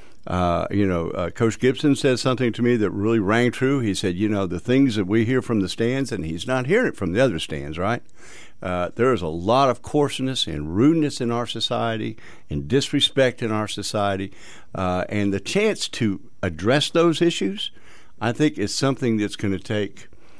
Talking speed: 205 wpm